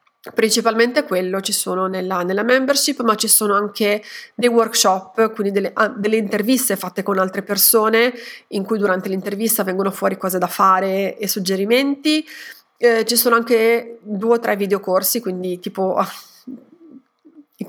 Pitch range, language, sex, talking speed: 195-235 Hz, Italian, female, 145 wpm